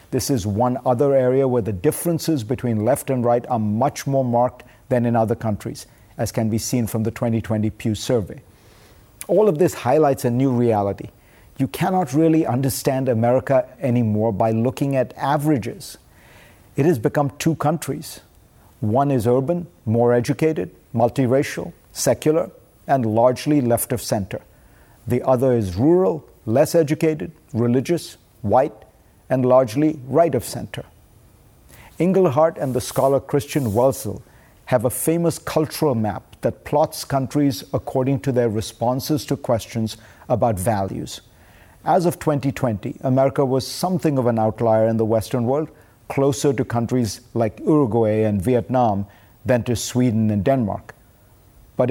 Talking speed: 145 wpm